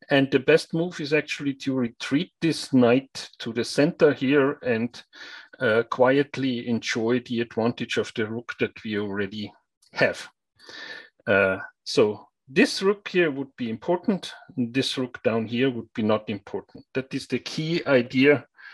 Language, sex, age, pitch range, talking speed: English, male, 40-59, 120-155 Hz, 155 wpm